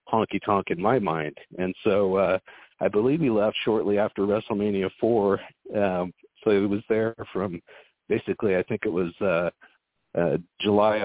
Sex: male